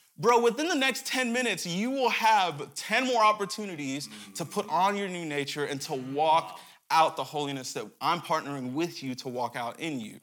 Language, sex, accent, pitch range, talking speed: English, male, American, 130-185 Hz, 200 wpm